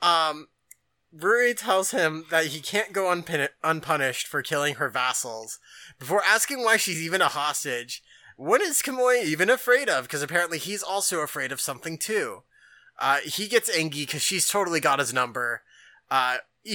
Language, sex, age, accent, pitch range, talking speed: English, male, 20-39, American, 145-185 Hz, 165 wpm